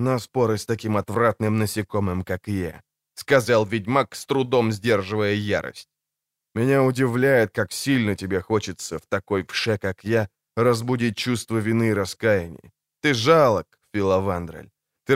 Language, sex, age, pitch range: Ukrainian, male, 20-39, 100-130 Hz